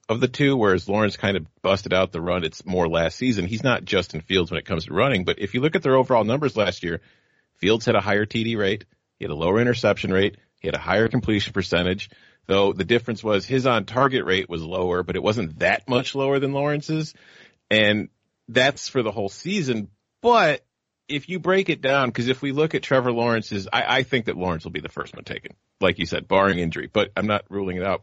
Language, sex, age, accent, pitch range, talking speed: English, male, 40-59, American, 95-125 Hz, 240 wpm